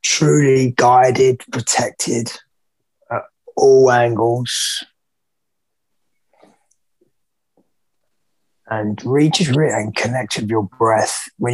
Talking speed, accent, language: 75 wpm, British, English